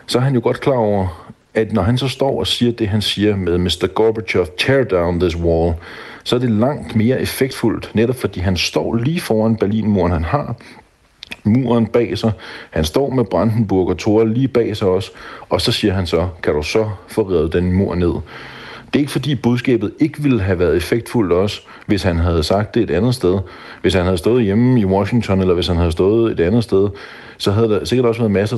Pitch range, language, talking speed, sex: 90-115 Hz, Danish, 220 wpm, male